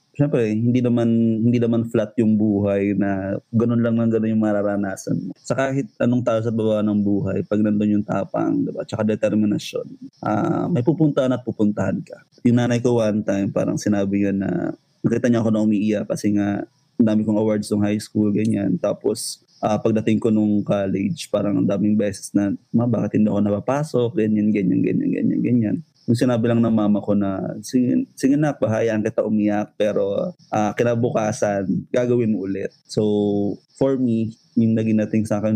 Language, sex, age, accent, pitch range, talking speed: English, male, 20-39, Filipino, 105-120 Hz, 175 wpm